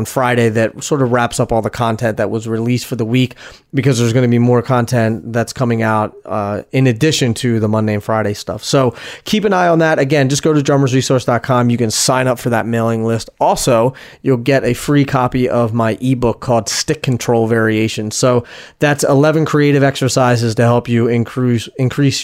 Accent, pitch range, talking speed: American, 115-140 Hz, 205 wpm